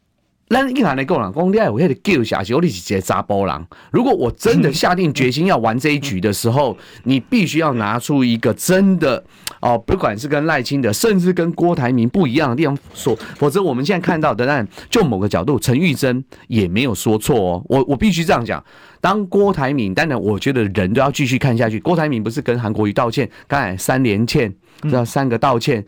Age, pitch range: 30-49, 125-180 Hz